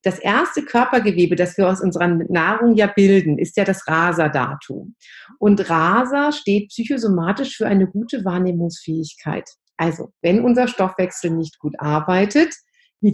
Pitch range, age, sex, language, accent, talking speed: 165-235 Hz, 50-69, female, English, German, 135 wpm